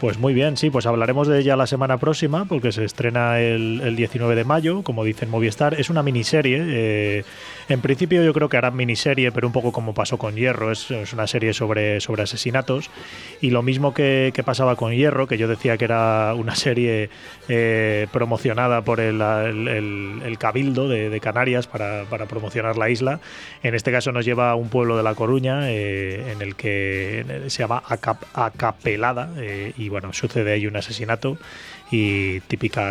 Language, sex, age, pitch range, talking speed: Spanish, male, 20-39, 110-130 Hz, 190 wpm